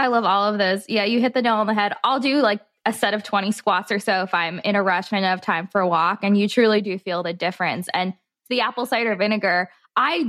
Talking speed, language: 285 wpm, English